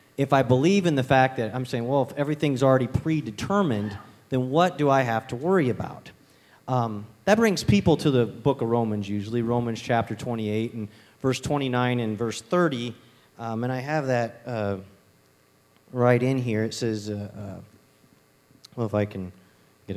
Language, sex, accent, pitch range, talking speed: English, male, American, 110-150 Hz, 175 wpm